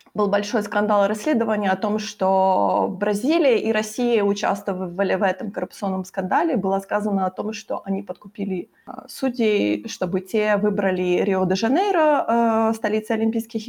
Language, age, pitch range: Ukrainian, 20-39, 200-245 Hz